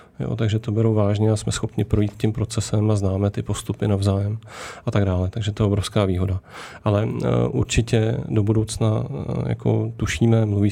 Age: 30-49